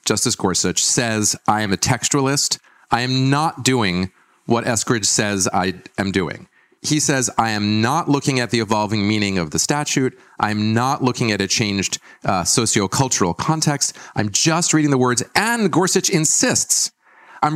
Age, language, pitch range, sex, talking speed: 40-59, English, 110-150 Hz, male, 165 wpm